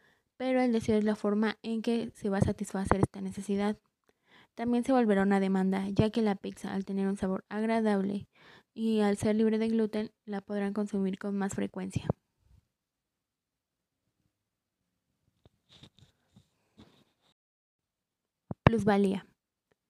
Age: 20-39